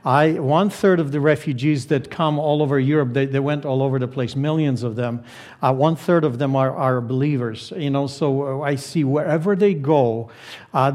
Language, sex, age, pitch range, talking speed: English, male, 50-69, 130-170 Hz, 205 wpm